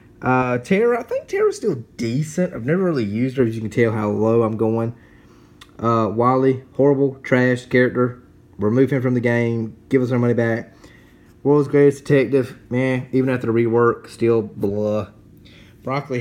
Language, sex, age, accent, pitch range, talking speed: English, male, 30-49, American, 110-140 Hz, 170 wpm